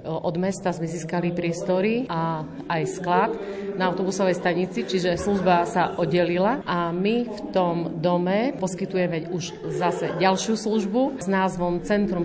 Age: 40-59